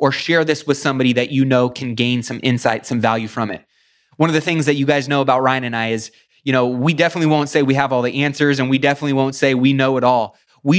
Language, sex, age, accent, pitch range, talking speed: English, male, 20-39, American, 125-150 Hz, 280 wpm